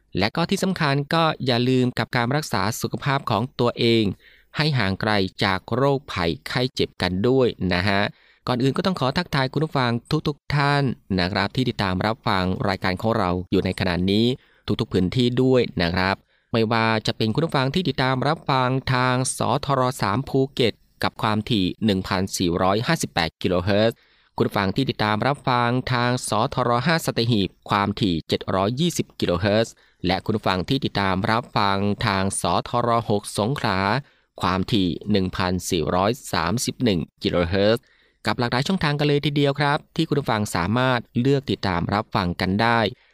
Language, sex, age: Thai, male, 20-39